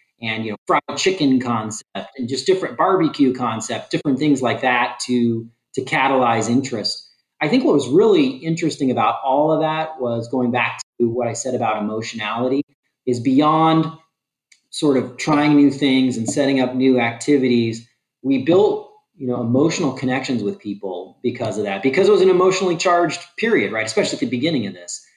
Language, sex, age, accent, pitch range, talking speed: English, male, 30-49, American, 115-140 Hz, 180 wpm